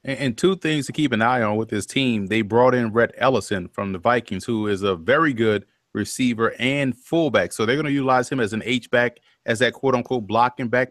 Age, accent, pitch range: 30-49, American, 115-135 Hz